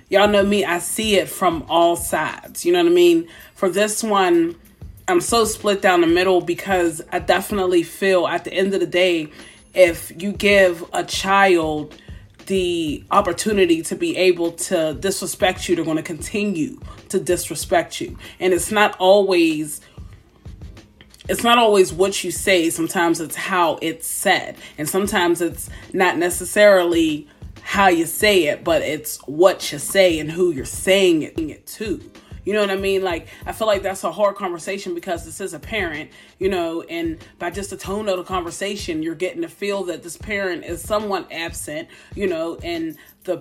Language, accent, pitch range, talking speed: English, American, 170-210 Hz, 180 wpm